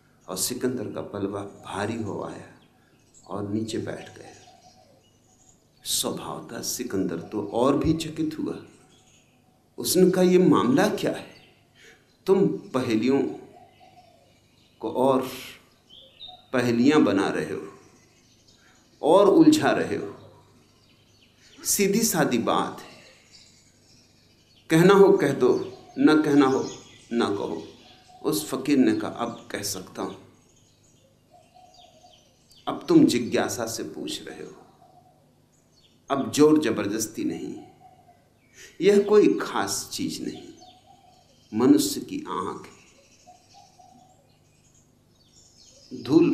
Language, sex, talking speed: Hindi, male, 100 wpm